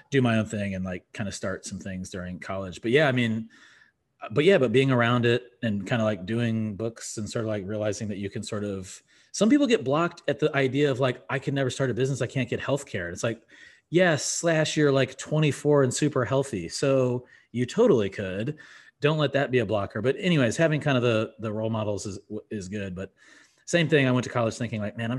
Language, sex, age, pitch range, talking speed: English, male, 30-49, 100-135 Hz, 245 wpm